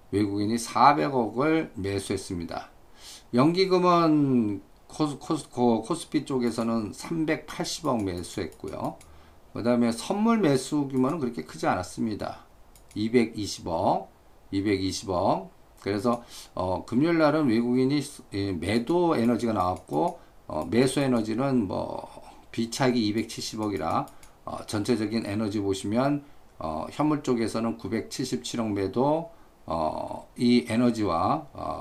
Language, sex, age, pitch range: Korean, male, 50-69, 105-145 Hz